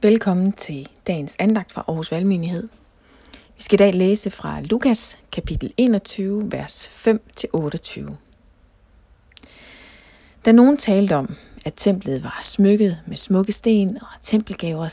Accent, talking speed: native, 125 wpm